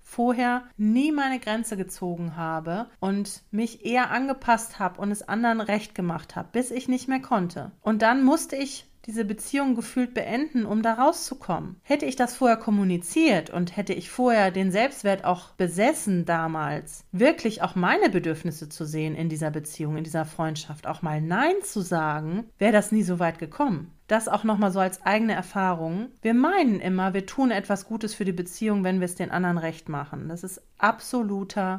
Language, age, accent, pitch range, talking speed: German, 40-59, German, 185-245 Hz, 185 wpm